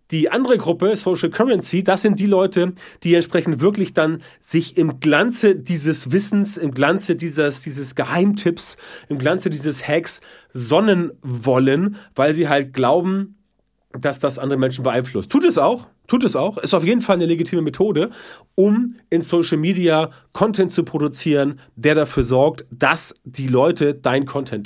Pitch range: 135-175 Hz